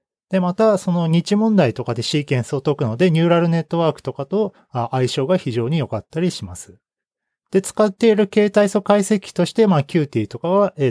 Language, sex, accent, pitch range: Japanese, male, native, 130-190 Hz